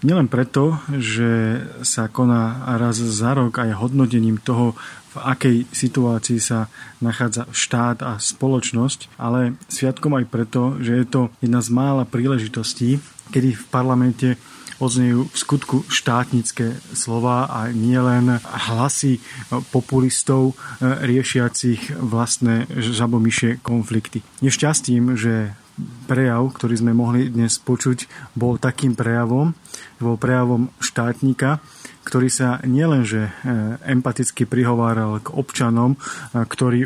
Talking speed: 110 wpm